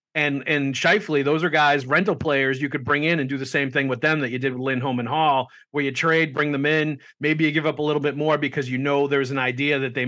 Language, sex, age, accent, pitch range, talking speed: English, male, 40-59, American, 130-150 Hz, 285 wpm